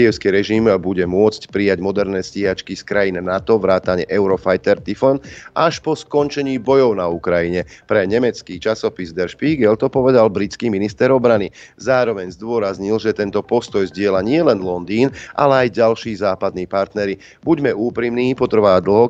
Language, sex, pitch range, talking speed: Slovak, male, 95-120 Hz, 140 wpm